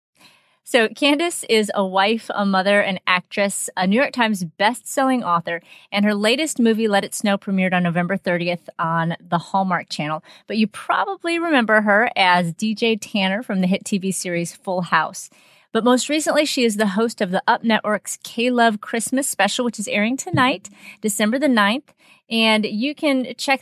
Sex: female